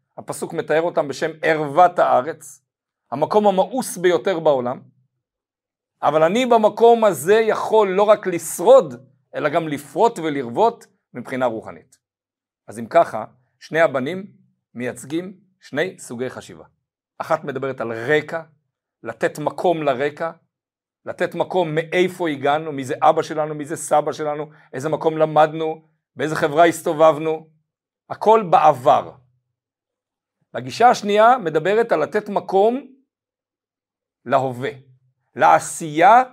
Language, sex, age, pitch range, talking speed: Hebrew, male, 50-69, 135-200 Hz, 110 wpm